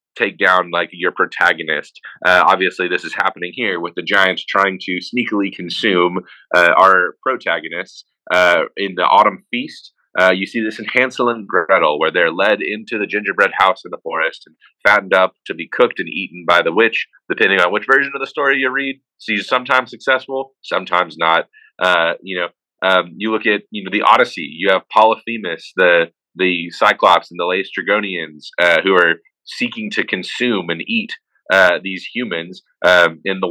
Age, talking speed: 30-49, 185 wpm